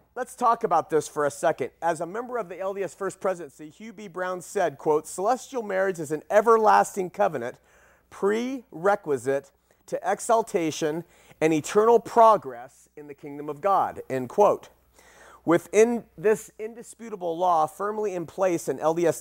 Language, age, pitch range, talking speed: English, 40-59, 155-205 Hz, 150 wpm